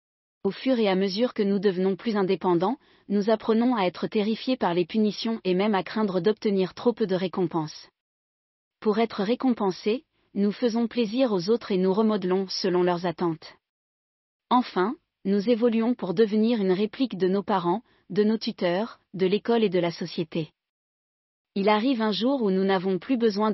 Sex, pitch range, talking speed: female, 185-230 Hz, 175 wpm